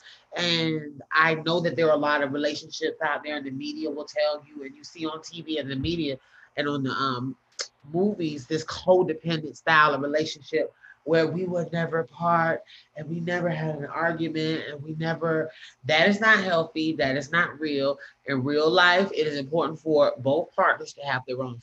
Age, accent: 30-49, American